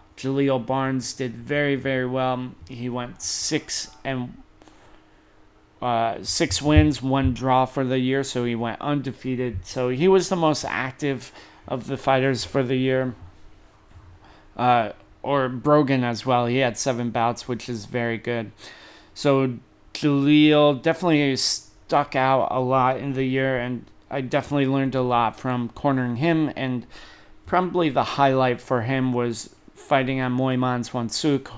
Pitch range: 120-135 Hz